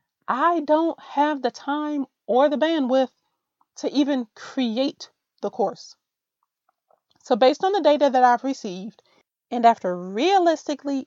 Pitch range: 220-285 Hz